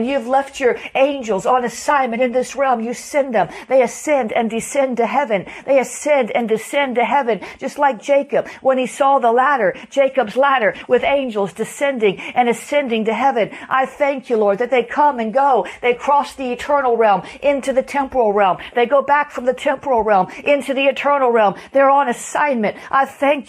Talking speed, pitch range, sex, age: 190 wpm, 235-275 Hz, female, 50-69